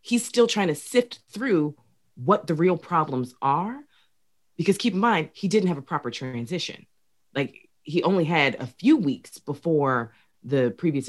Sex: female